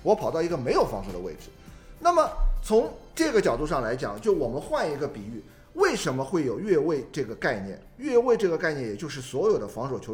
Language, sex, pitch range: Chinese, male, 115-195 Hz